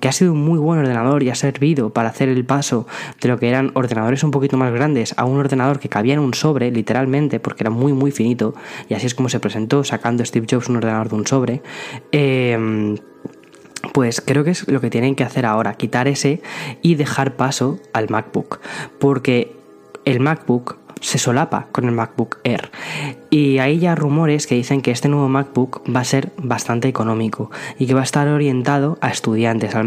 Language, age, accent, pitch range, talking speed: Spanish, 10-29, Spanish, 115-140 Hz, 205 wpm